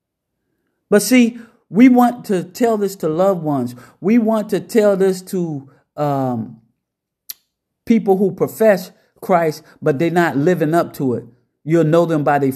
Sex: male